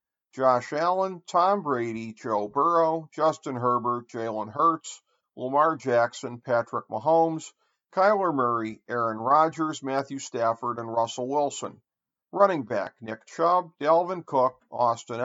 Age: 50-69